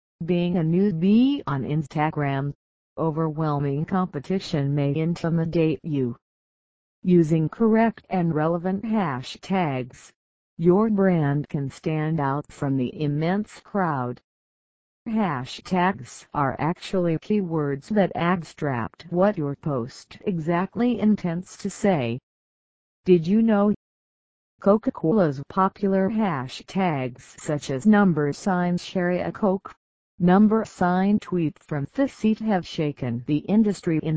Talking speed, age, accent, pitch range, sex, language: 105 wpm, 50-69, American, 140-190 Hz, female, English